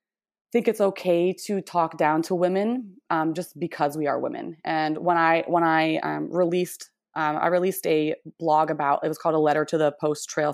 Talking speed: 205 wpm